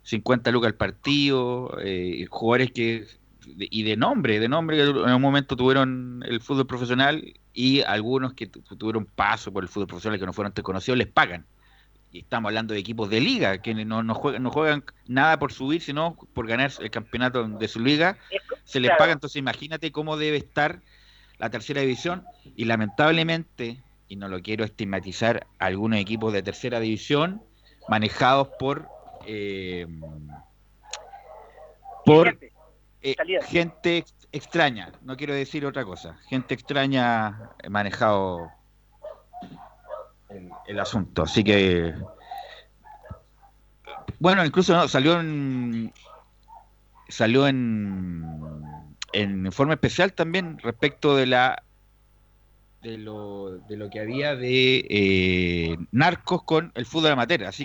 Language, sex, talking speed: Spanish, male, 135 wpm